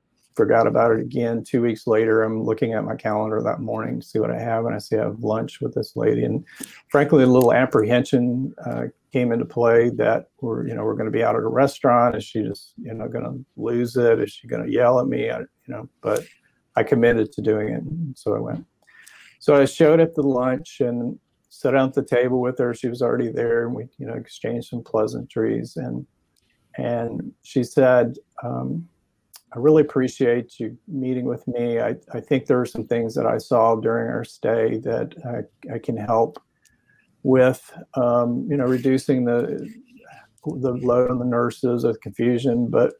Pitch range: 115-135 Hz